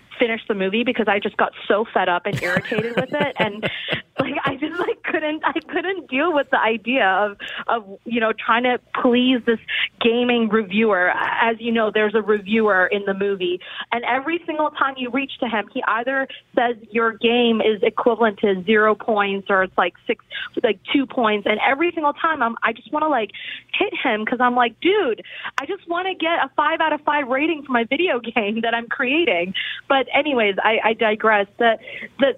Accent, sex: American, female